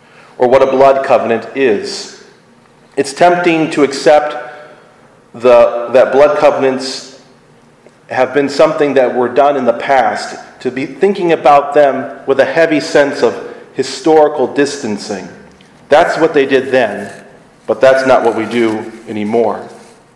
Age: 40-59